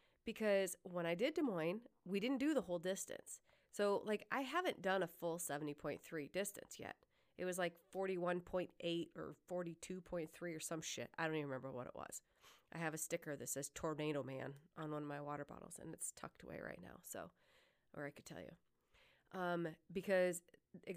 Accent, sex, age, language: American, female, 30-49, English